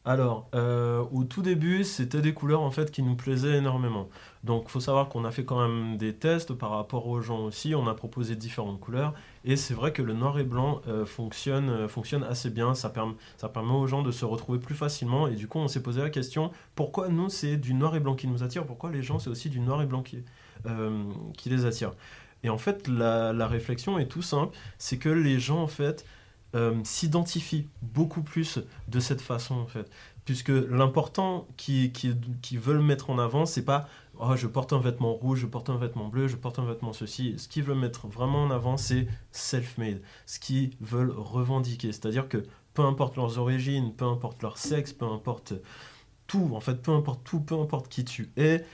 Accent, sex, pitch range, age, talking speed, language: French, male, 115-140 Hz, 20-39, 220 wpm, French